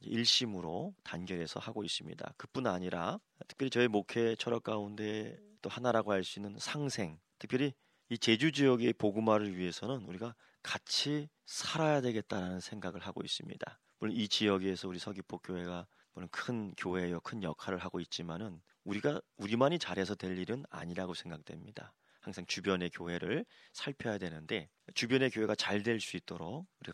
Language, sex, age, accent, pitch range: Korean, male, 30-49, native, 90-120 Hz